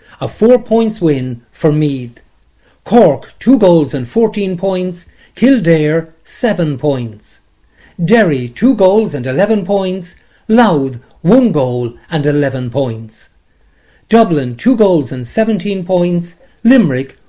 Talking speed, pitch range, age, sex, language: 120 wpm, 140-210 Hz, 50-69, male, English